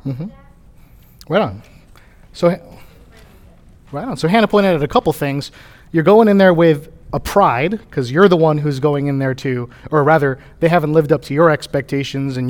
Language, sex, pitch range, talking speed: English, male, 130-170 Hz, 185 wpm